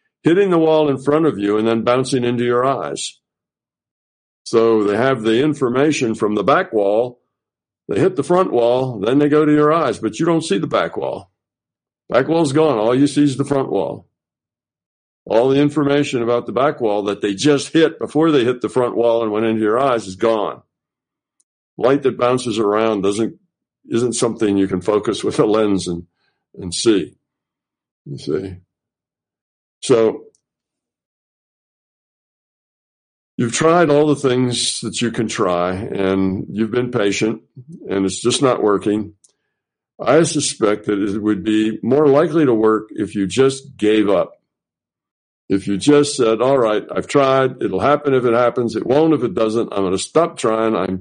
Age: 60-79